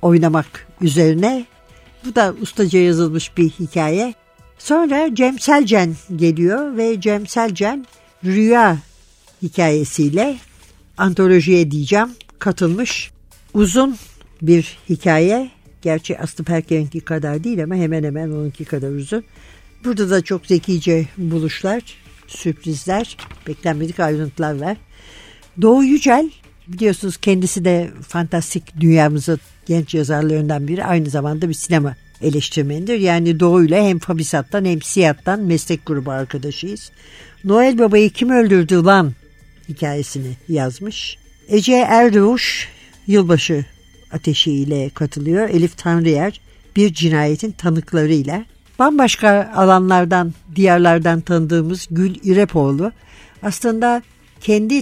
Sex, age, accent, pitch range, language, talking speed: female, 60-79, native, 155-205 Hz, Turkish, 100 wpm